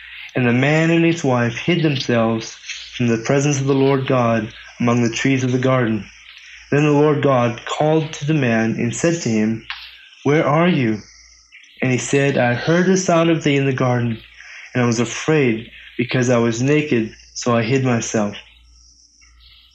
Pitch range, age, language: 110-140 Hz, 30-49, English